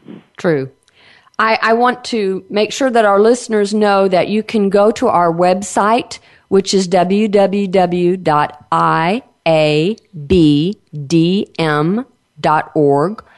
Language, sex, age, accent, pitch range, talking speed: English, female, 50-69, American, 165-210 Hz, 95 wpm